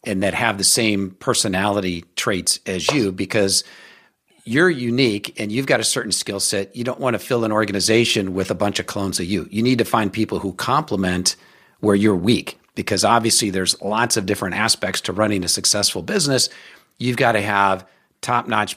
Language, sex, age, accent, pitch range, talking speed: English, male, 50-69, American, 100-120 Hz, 190 wpm